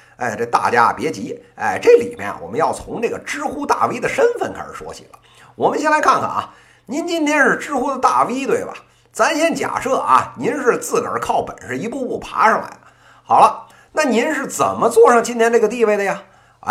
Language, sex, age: Chinese, male, 50-69